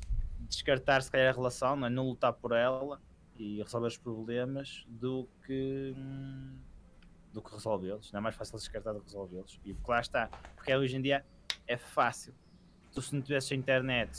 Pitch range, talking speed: 125-150 Hz, 185 wpm